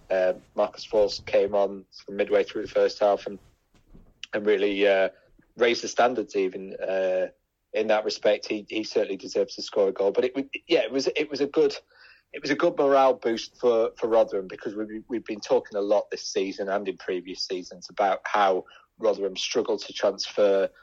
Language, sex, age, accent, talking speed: English, male, 30-49, British, 195 wpm